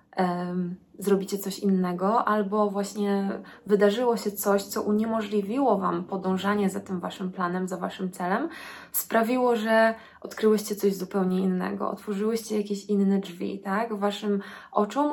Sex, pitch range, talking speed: female, 190-215 Hz, 125 wpm